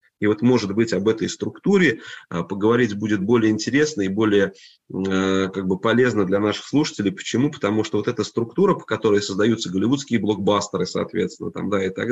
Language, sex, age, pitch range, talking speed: Russian, male, 20-39, 100-120 Hz, 155 wpm